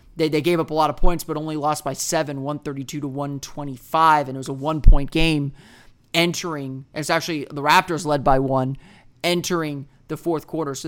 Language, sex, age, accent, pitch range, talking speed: English, male, 30-49, American, 140-165 Hz, 180 wpm